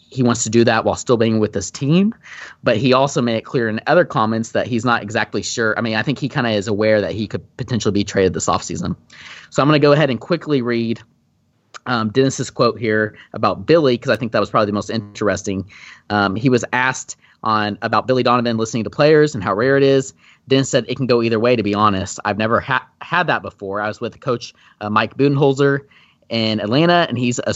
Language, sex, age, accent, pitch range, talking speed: English, male, 30-49, American, 105-130 Hz, 240 wpm